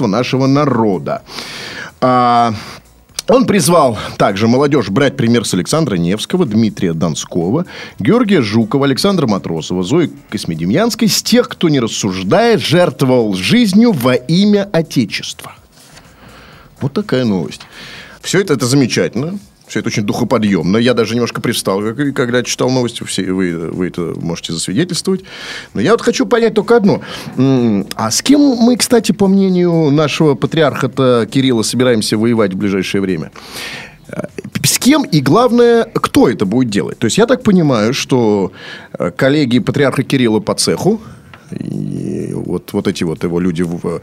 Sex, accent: male, native